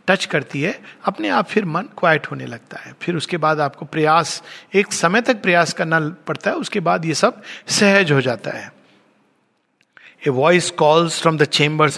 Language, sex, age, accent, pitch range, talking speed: Hindi, male, 50-69, native, 130-175 Hz, 185 wpm